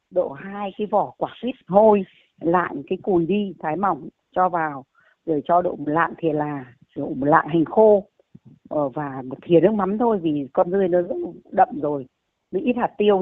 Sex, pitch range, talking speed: female, 150-205 Hz, 195 wpm